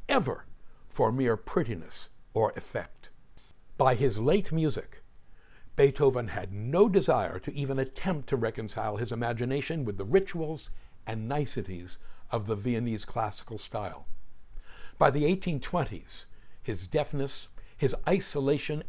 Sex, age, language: male, 60-79, English